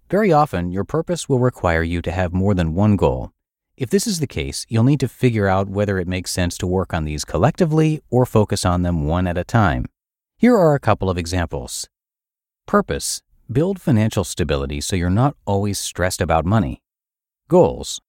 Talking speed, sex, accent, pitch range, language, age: 190 wpm, male, American, 85-120 Hz, English, 30-49